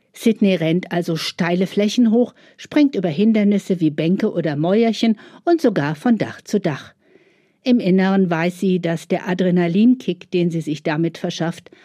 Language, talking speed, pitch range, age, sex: German, 155 wpm, 175-215 Hz, 50-69, female